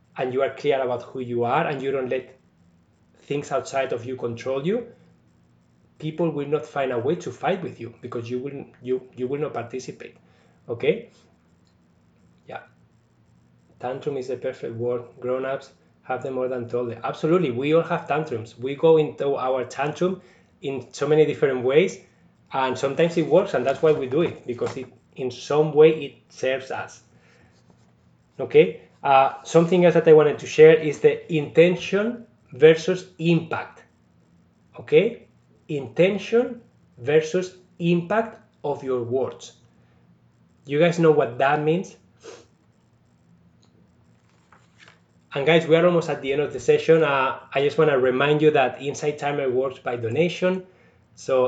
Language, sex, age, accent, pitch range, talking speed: English, male, 20-39, Spanish, 120-160 Hz, 160 wpm